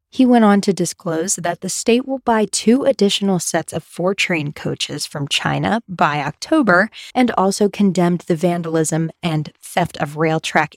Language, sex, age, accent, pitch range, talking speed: English, female, 20-39, American, 165-210 Hz, 165 wpm